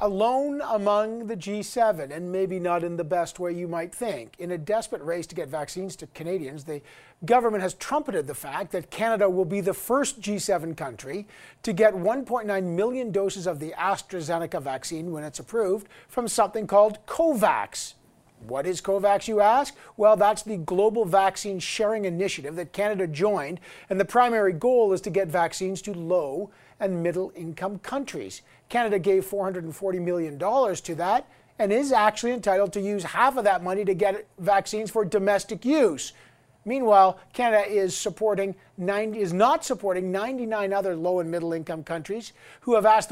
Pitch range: 175-215 Hz